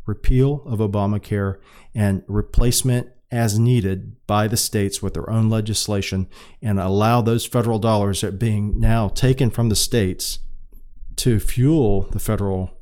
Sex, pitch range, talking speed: male, 100-120 Hz, 145 wpm